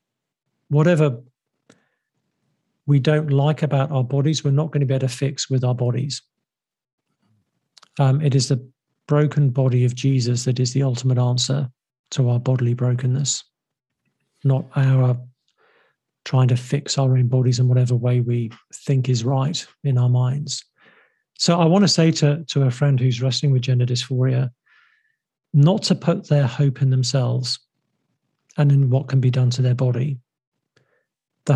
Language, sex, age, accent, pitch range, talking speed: English, male, 50-69, British, 125-145 Hz, 160 wpm